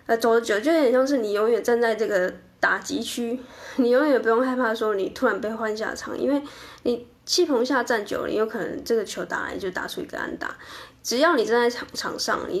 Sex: female